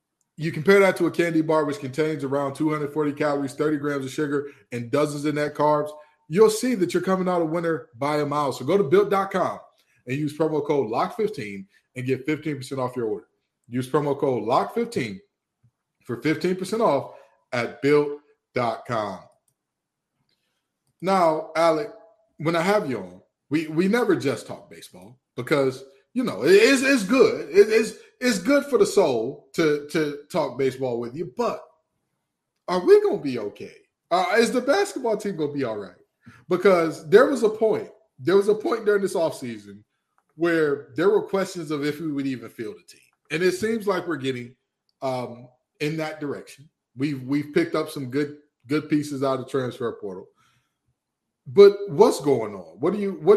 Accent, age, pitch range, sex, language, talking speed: American, 20-39, 140-205 Hz, male, English, 180 wpm